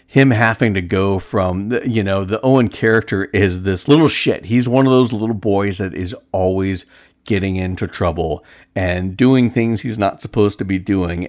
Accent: American